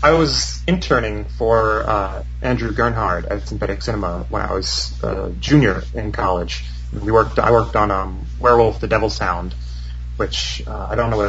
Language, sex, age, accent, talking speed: English, male, 30-49, American, 175 wpm